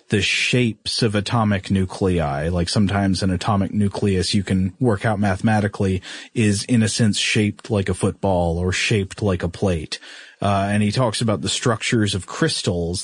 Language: English